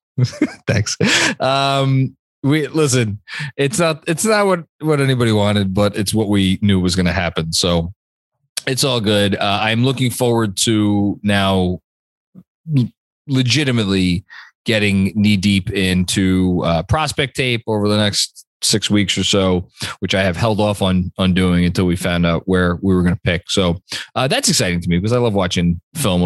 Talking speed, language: 170 wpm, English